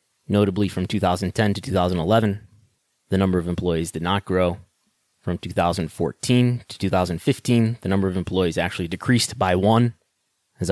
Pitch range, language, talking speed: 90-110 Hz, English, 140 wpm